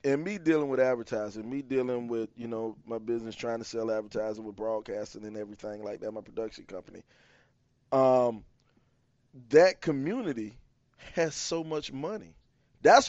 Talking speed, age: 150 wpm, 20-39